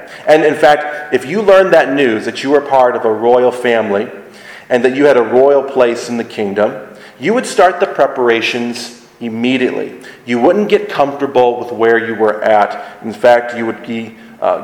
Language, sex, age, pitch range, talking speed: English, male, 40-59, 115-140 Hz, 195 wpm